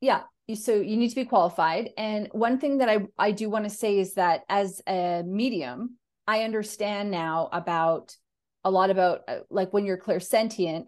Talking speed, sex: 180 wpm, female